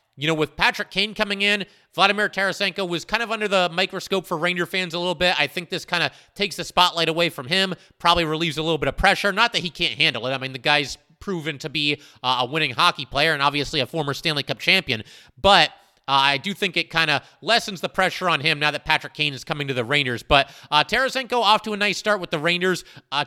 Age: 30-49